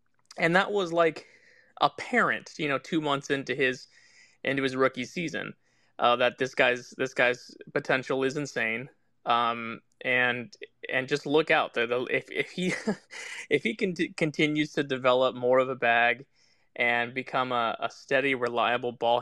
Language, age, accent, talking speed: English, 20-39, American, 160 wpm